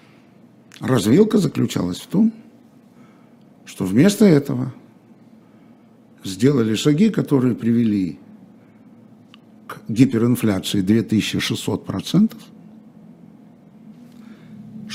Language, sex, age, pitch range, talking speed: Russian, male, 60-79, 135-225 Hz, 55 wpm